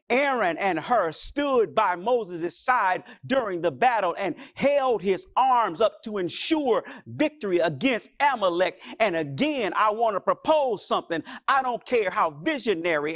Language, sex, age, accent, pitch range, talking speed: English, male, 50-69, American, 195-285 Hz, 145 wpm